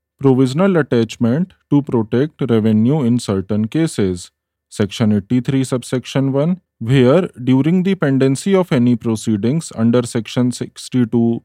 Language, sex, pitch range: English, male, 110-140 Hz